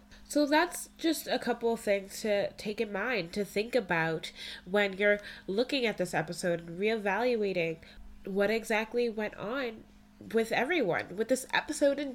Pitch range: 195-260 Hz